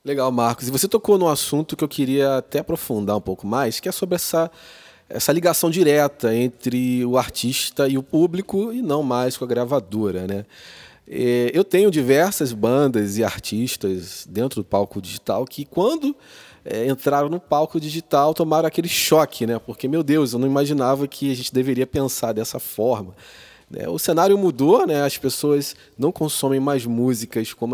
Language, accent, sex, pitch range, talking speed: Portuguese, Brazilian, male, 120-165 Hz, 170 wpm